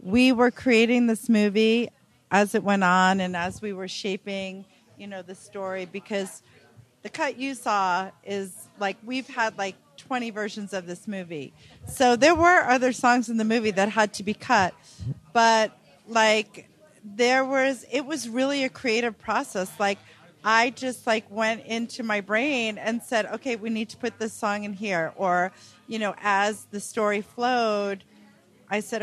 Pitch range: 195-240 Hz